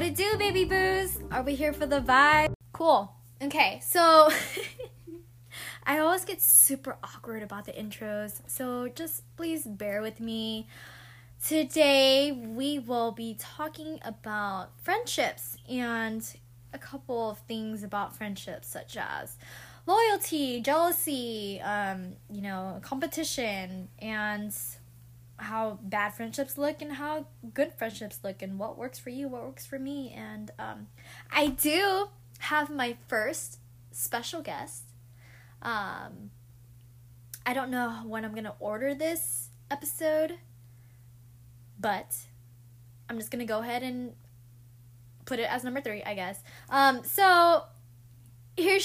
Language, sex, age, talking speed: English, female, 10-29, 130 wpm